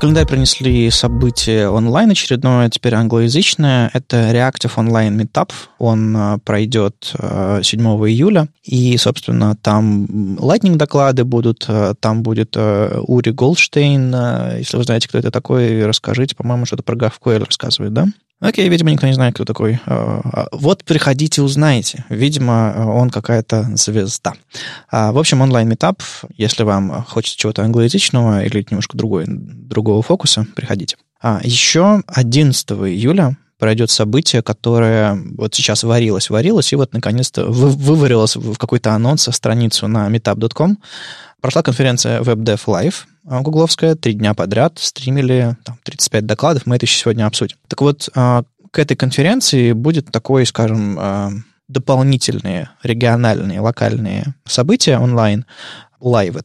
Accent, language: native, Russian